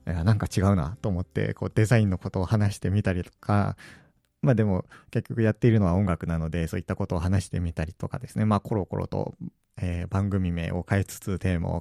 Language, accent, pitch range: Japanese, native, 95-140 Hz